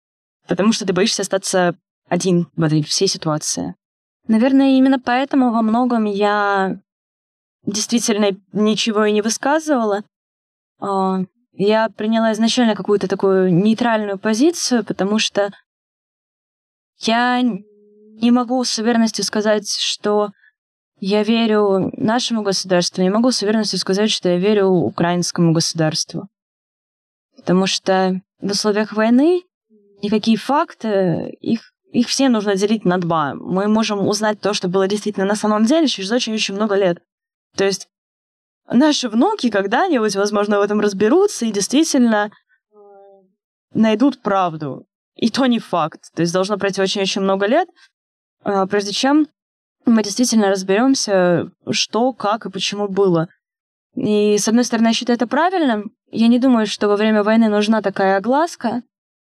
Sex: female